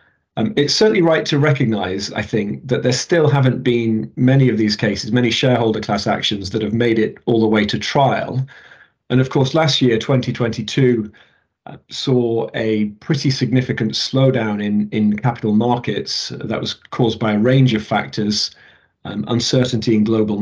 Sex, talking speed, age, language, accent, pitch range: male, 170 wpm, 40-59, English, British, 110-130 Hz